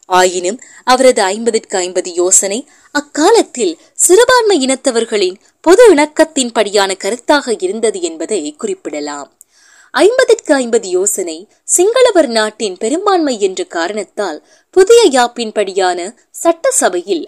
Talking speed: 85 wpm